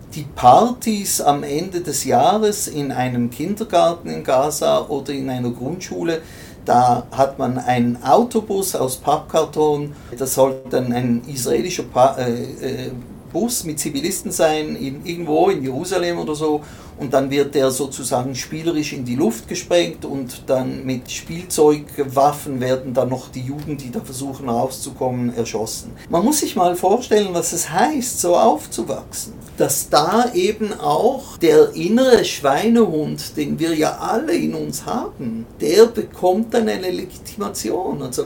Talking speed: 150 wpm